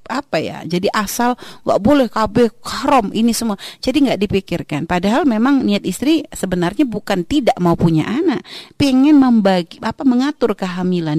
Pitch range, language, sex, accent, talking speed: 200-280 Hz, Indonesian, female, native, 150 wpm